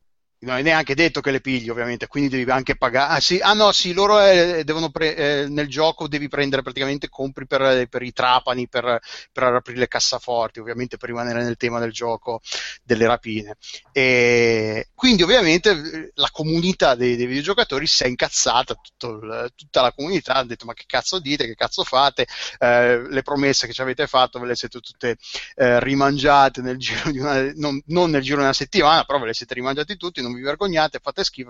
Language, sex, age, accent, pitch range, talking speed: Italian, male, 30-49, native, 125-155 Hz, 200 wpm